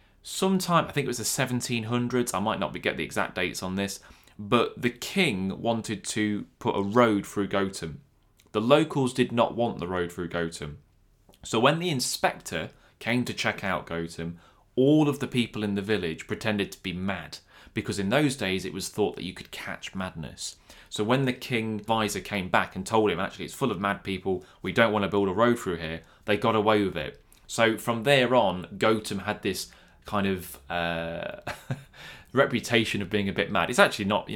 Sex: male